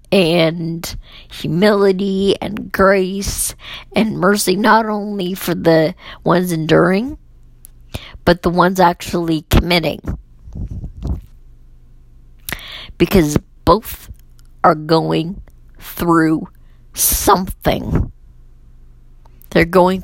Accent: American